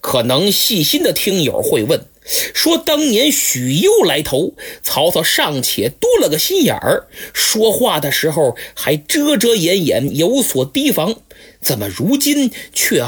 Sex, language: male, Chinese